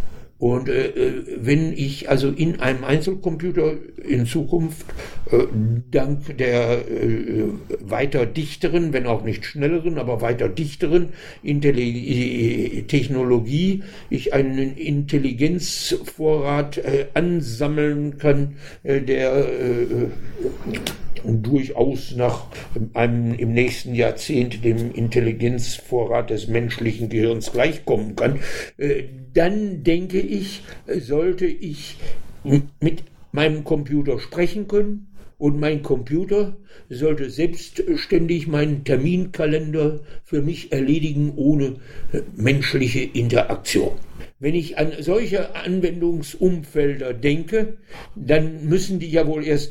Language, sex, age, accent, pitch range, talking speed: German, male, 60-79, German, 130-170 Hz, 100 wpm